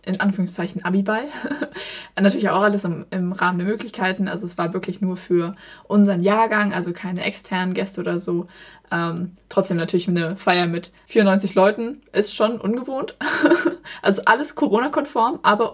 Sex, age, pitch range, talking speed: female, 20-39, 185-220 Hz, 155 wpm